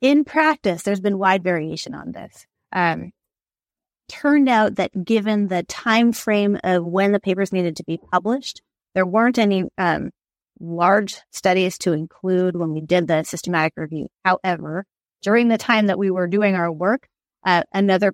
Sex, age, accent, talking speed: female, 30-49, American, 165 wpm